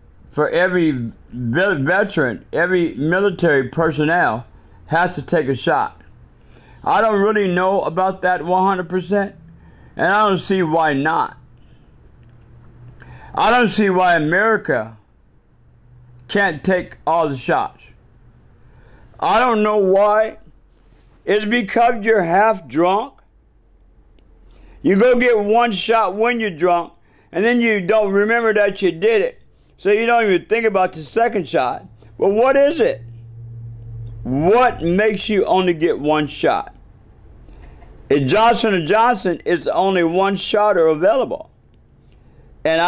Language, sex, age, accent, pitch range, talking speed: English, male, 50-69, American, 150-215 Hz, 125 wpm